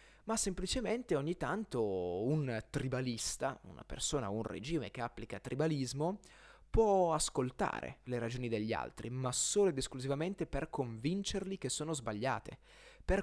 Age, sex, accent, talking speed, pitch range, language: 20-39, male, native, 135 wpm, 120-155 Hz, Italian